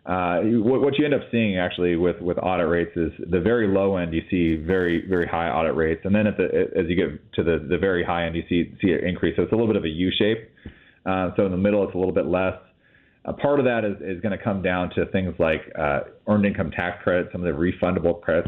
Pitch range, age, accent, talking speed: 85-105 Hz, 30-49, American, 270 wpm